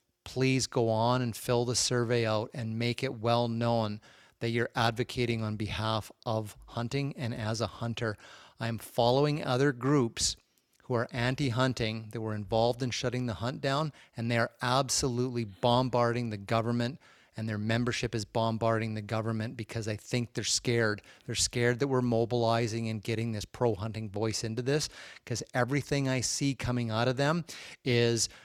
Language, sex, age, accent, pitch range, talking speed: English, male, 30-49, American, 110-125 Hz, 170 wpm